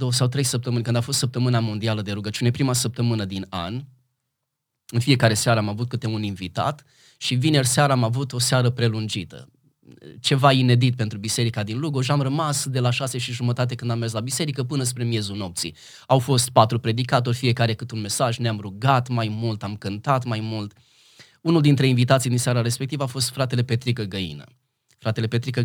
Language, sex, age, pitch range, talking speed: Romanian, male, 20-39, 105-130 Hz, 190 wpm